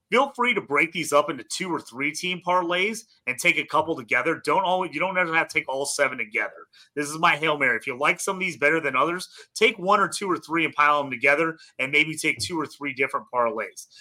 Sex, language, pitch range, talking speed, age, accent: male, English, 140-175 Hz, 255 wpm, 30-49, American